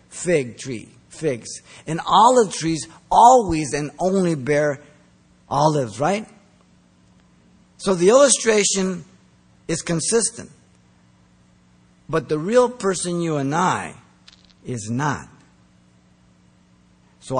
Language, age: English, 50-69